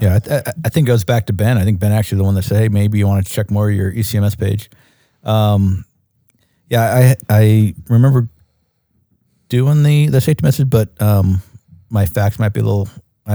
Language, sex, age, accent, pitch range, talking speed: English, male, 50-69, American, 95-115 Hz, 215 wpm